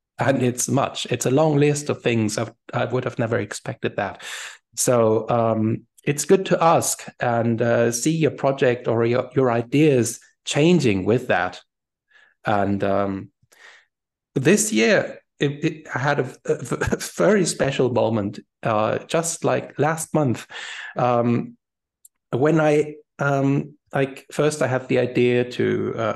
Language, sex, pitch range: English, male, 105-135 Hz